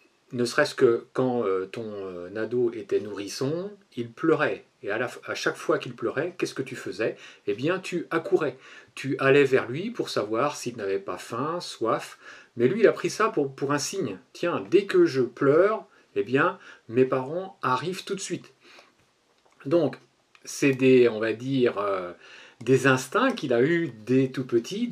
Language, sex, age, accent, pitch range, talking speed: French, male, 40-59, French, 125-180 Hz, 175 wpm